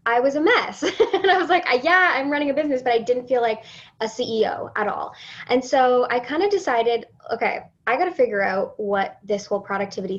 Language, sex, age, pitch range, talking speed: English, female, 10-29, 205-255 Hz, 225 wpm